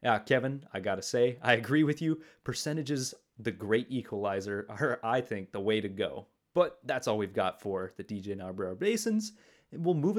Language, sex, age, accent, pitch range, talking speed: English, male, 30-49, American, 105-150 Hz, 195 wpm